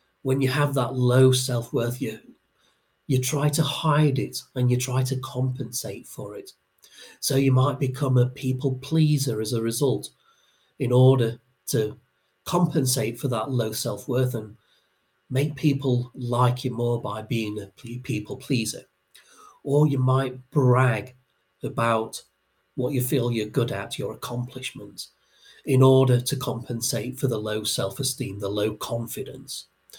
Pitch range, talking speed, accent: 110-135 Hz, 145 wpm, British